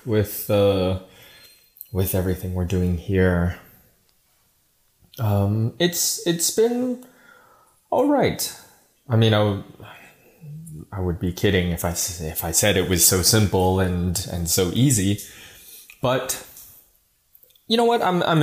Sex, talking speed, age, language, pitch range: male, 130 wpm, 20-39, German, 90-115 Hz